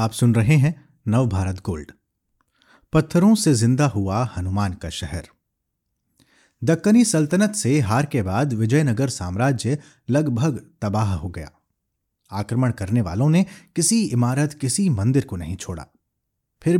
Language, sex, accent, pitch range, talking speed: Hindi, male, native, 100-150 Hz, 135 wpm